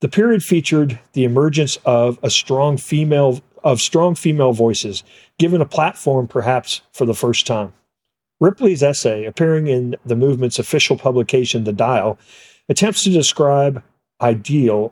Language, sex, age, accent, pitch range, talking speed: English, male, 50-69, American, 115-150 Hz, 130 wpm